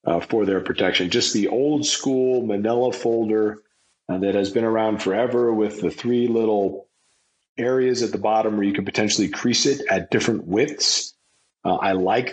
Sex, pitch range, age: male, 100-125 Hz, 40-59